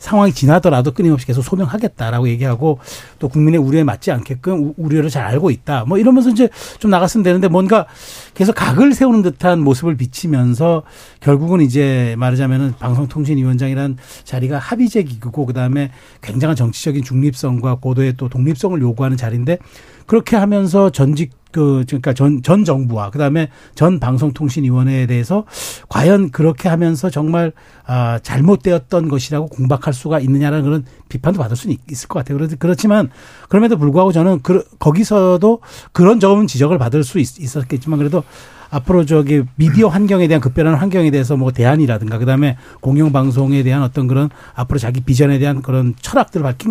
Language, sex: Korean, male